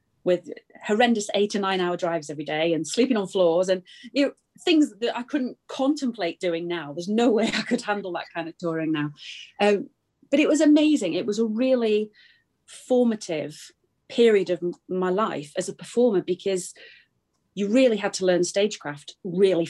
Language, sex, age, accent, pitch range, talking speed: English, female, 30-49, British, 175-225 Hz, 180 wpm